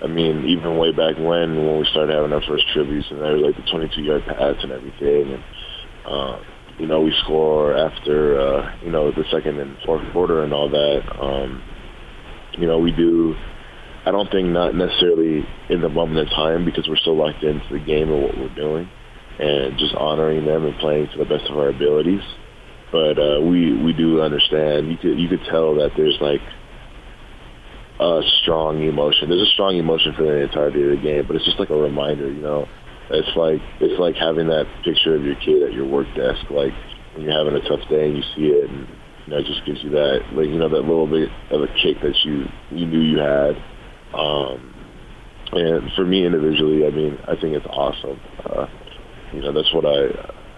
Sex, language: male, English